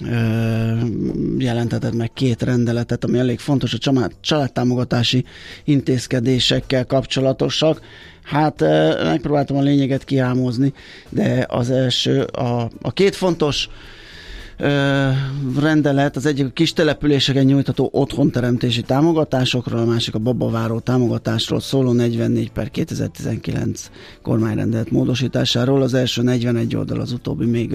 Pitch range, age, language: 115-140 Hz, 20-39, Hungarian